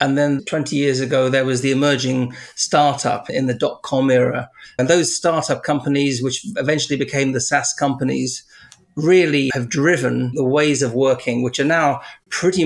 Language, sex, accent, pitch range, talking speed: English, male, British, 130-155 Hz, 165 wpm